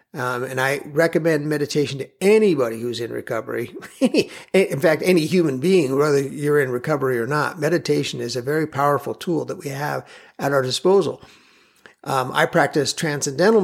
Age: 50-69